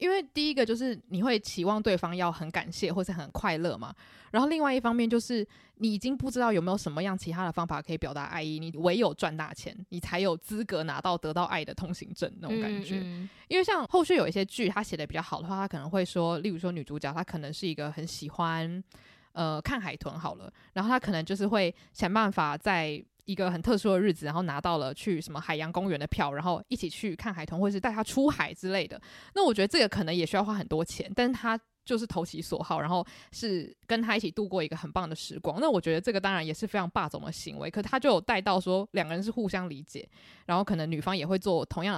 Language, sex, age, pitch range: Chinese, female, 20-39, 165-220 Hz